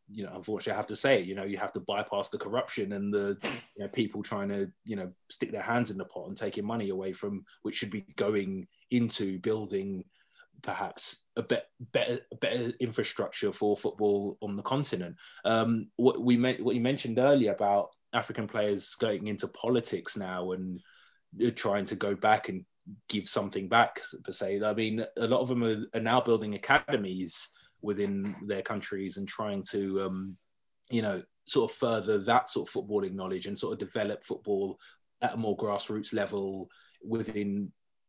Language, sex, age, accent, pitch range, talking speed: English, male, 20-39, British, 95-110 Hz, 185 wpm